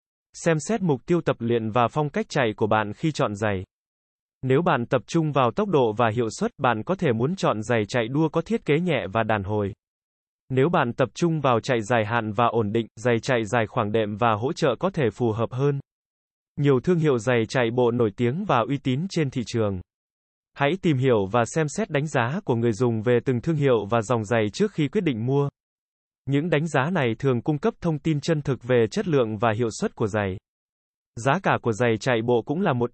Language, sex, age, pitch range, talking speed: Vietnamese, male, 20-39, 115-155 Hz, 235 wpm